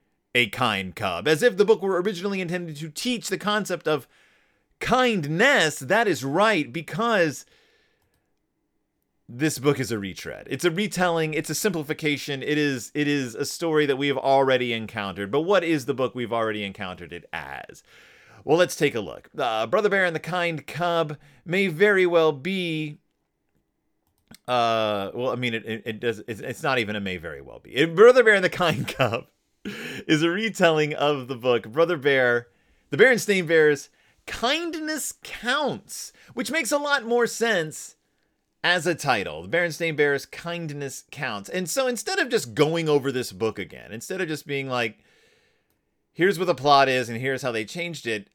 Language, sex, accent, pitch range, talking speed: English, male, American, 125-185 Hz, 175 wpm